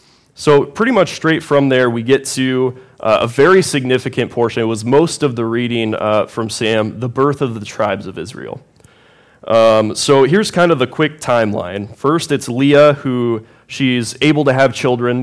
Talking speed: 185 wpm